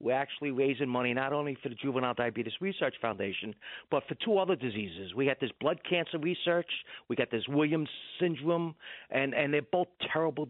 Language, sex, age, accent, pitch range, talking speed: English, male, 50-69, American, 150-215 Hz, 190 wpm